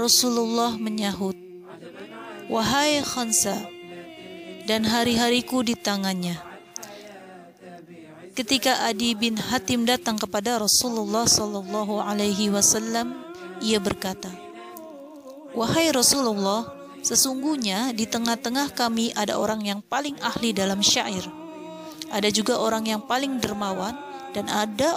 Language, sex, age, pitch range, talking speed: Indonesian, female, 30-49, 195-250 Hz, 95 wpm